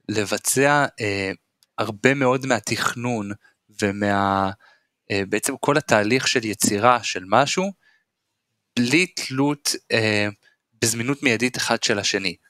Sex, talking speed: male, 105 wpm